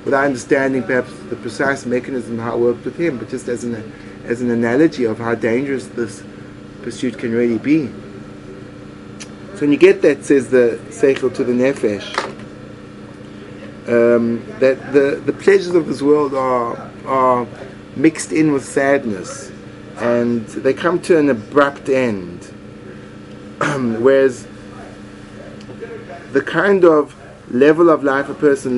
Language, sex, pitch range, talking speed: English, male, 100-150 Hz, 140 wpm